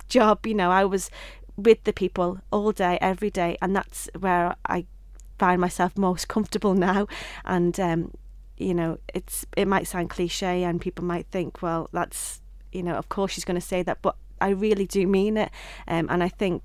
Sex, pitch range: female, 185-220 Hz